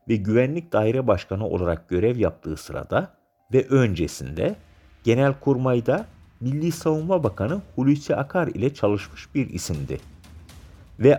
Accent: native